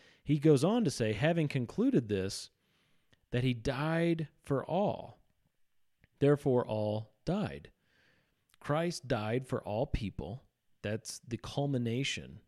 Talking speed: 115 wpm